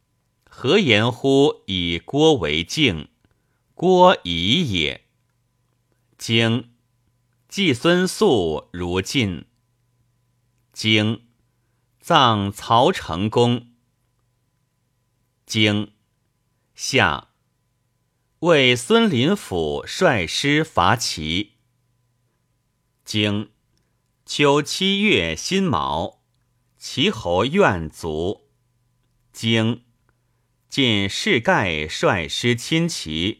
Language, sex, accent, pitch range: Chinese, male, native, 110-130 Hz